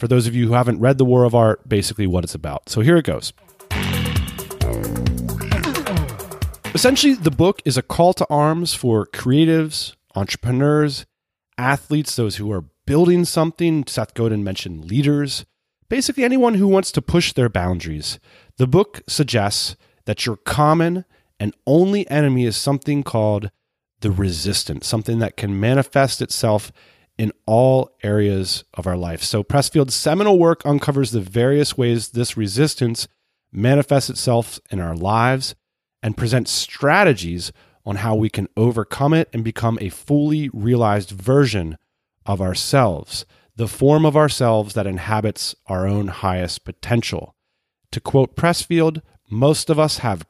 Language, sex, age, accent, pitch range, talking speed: English, male, 30-49, American, 100-145 Hz, 145 wpm